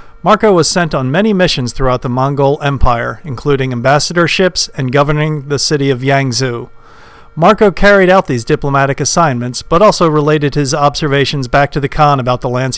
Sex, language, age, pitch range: male, English, 50-69, 135-175 Hz